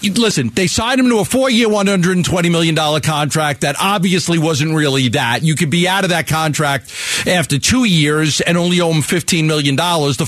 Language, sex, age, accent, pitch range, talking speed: English, male, 40-59, American, 170-235 Hz, 185 wpm